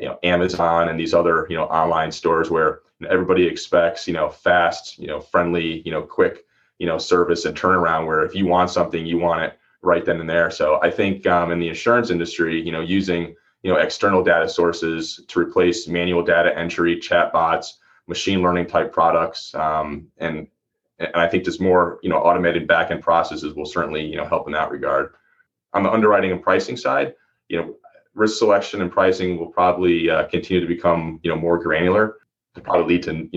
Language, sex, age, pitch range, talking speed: English, male, 30-49, 80-90 Hz, 200 wpm